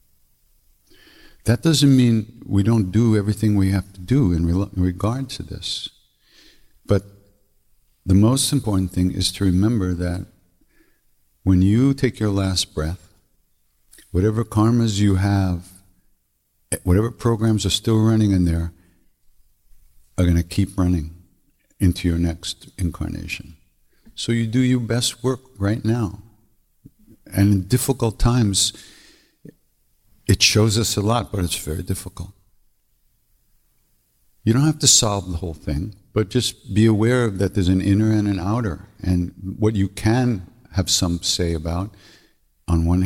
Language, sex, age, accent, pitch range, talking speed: English, male, 60-79, American, 90-110 Hz, 140 wpm